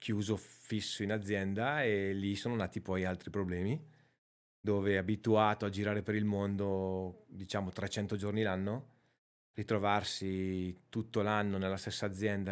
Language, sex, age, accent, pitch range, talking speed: Italian, male, 30-49, native, 95-110 Hz, 135 wpm